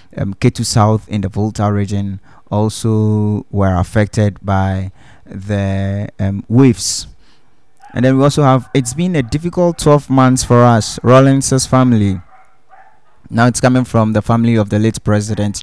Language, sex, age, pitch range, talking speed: English, male, 20-39, 100-120 Hz, 150 wpm